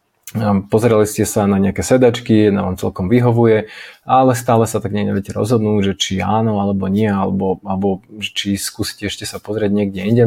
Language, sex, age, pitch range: Slovak, male, 20-39, 100-115 Hz